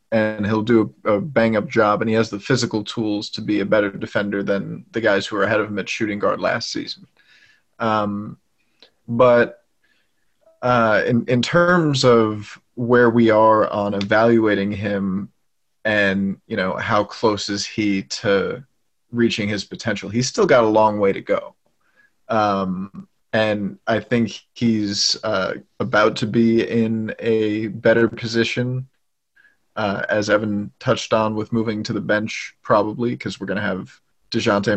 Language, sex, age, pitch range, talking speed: English, male, 30-49, 100-115 Hz, 160 wpm